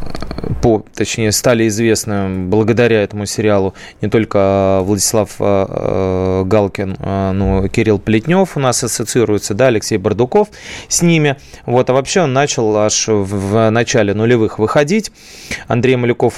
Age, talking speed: 20-39, 120 wpm